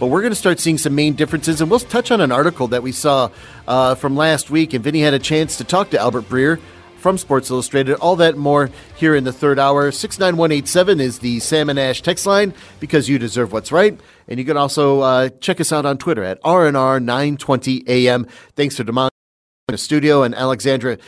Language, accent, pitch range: English, American, 125-160 Hz